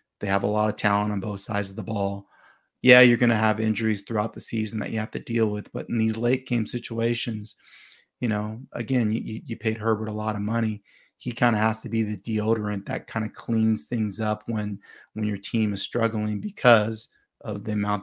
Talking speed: 225 wpm